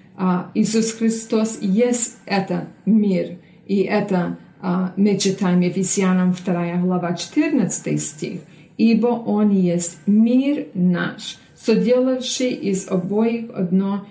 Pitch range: 185-225 Hz